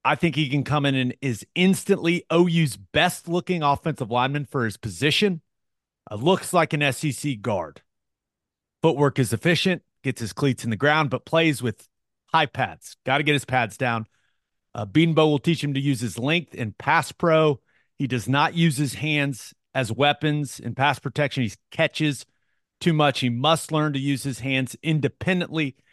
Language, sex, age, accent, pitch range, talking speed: English, male, 30-49, American, 125-150 Hz, 180 wpm